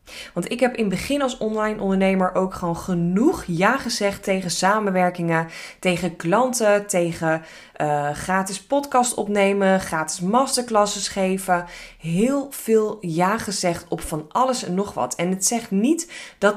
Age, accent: 20-39, Dutch